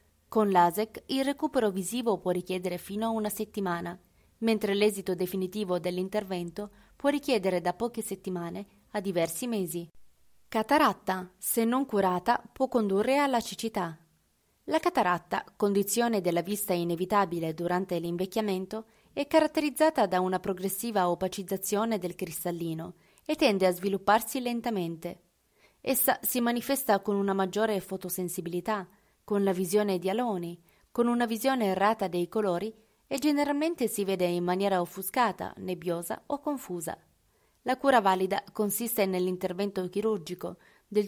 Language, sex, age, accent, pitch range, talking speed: Italian, female, 20-39, native, 185-225 Hz, 125 wpm